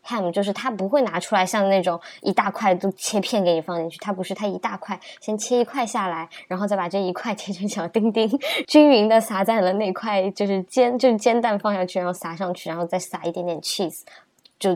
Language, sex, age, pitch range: Chinese, male, 20-39, 185-290 Hz